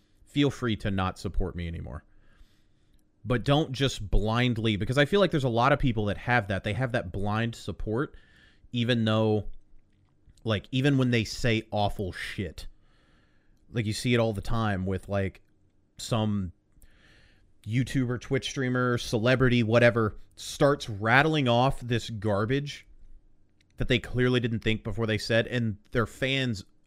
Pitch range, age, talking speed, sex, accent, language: 95-120 Hz, 30-49, 150 wpm, male, American, English